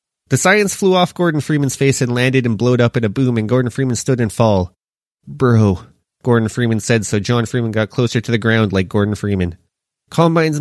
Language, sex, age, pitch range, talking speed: English, male, 20-39, 105-130 Hz, 210 wpm